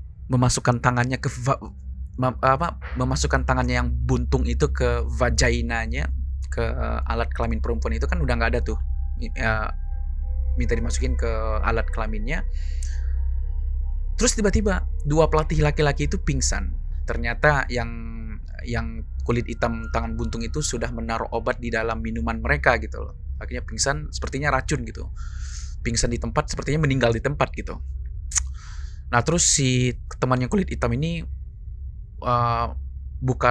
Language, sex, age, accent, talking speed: Indonesian, male, 20-39, native, 125 wpm